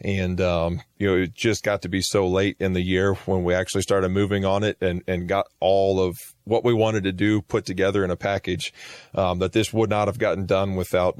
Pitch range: 90-100 Hz